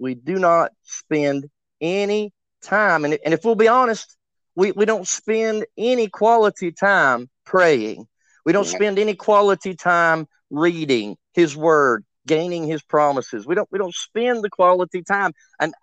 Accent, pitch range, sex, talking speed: American, 145-200 Hz, male, 150 wpm